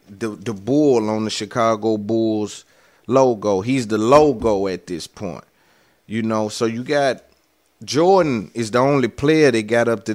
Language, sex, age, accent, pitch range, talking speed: English, male, 30-49, American, 115-140 Hz, 165 wpm